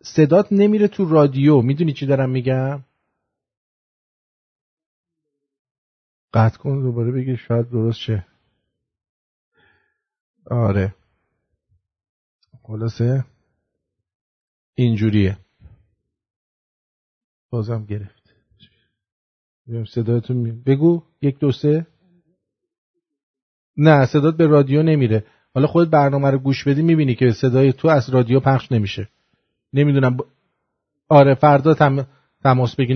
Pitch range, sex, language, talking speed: 115-150 Hz, male, English, 85 wpm